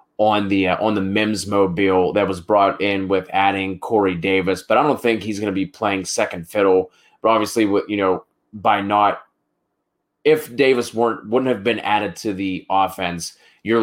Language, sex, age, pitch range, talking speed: English, male, 20-39, 95-105 Hz, 190 wpm